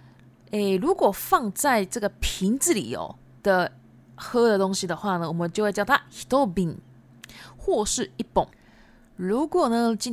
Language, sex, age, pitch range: Japanese, female, 20-39, 170-240 Hz